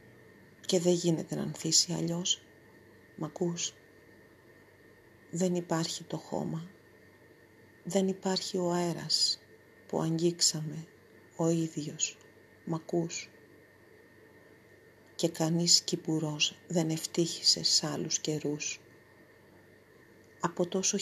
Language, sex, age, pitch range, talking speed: Greek, female, 40-59, 145-180 Hz, 85 wpm